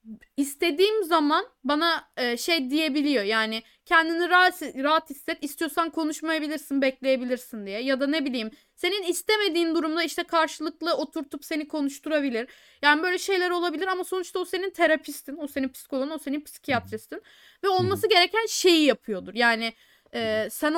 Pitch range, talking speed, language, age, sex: 255-330 Hz, 140 wpm, Turkish, 10-29, female